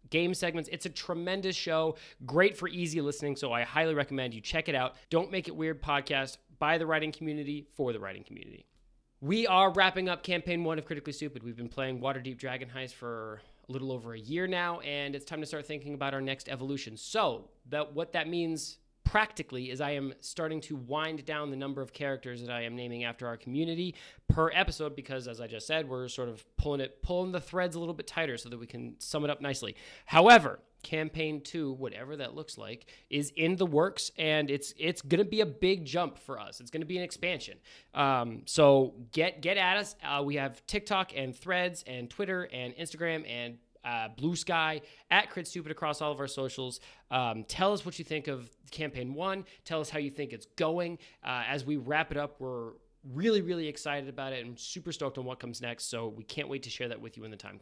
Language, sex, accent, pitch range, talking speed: English, male, American, 130-165 Hz, 225 wpm